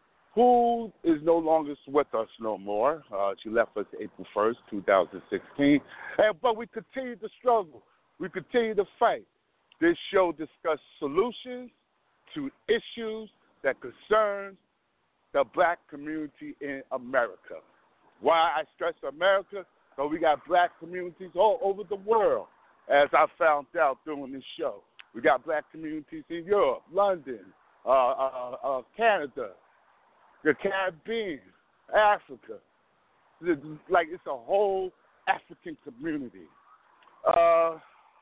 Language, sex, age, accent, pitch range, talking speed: English, male, 50-69, American, 155-240 Hz, 125 wpm